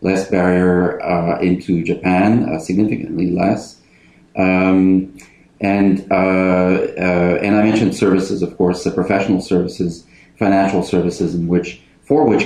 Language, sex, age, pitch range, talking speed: English, male, 40-59, 90-100 Hz, 130 wpm